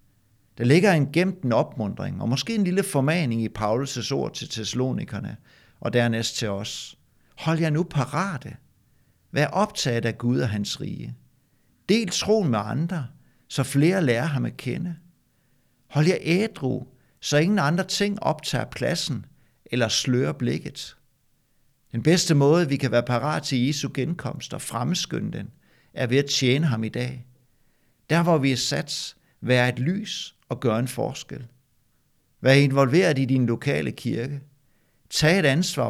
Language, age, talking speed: Danish, 60-79, 155 wpm